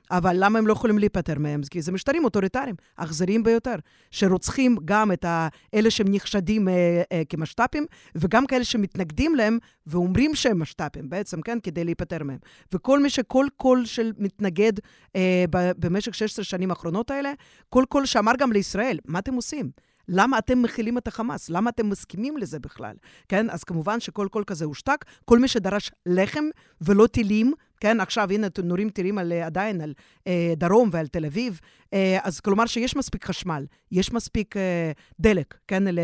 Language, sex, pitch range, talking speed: Hebrew, female, 175-225 Hz, 160 wpm